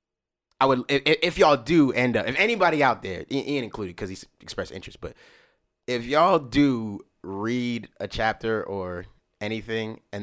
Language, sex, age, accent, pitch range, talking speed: English, male, 20-39, American, 100-135 Hz, 165 wpm